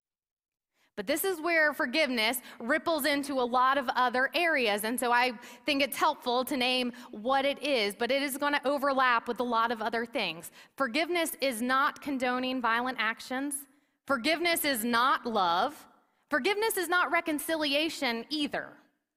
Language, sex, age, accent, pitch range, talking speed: English, female, 30-49, American, 235-290 Hz, 155 wpm